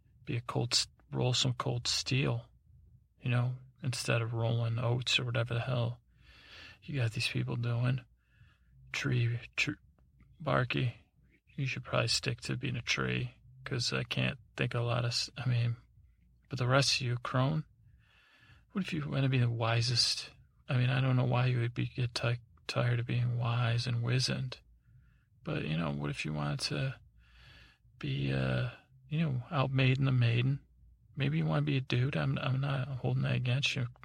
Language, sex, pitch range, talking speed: English, male, 110-130 Hz, 185 wpm